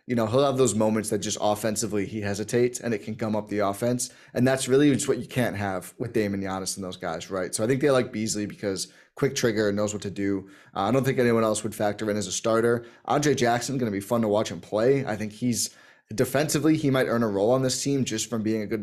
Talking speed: 275 wpm